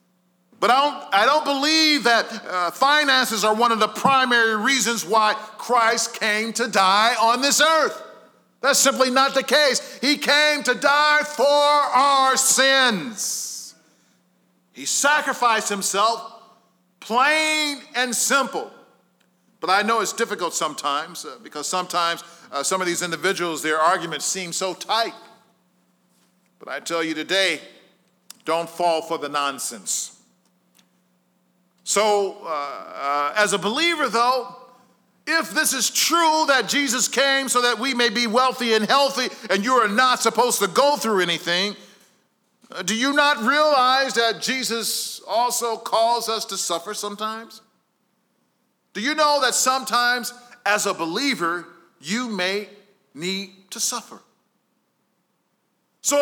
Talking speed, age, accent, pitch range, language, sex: 135 wpm, 50-69, American, 195-270 Hz, English, male